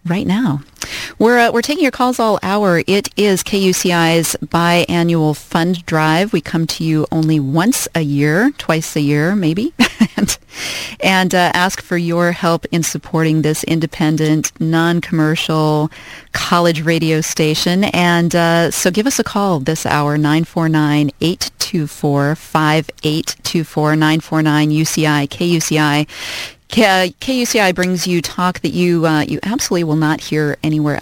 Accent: American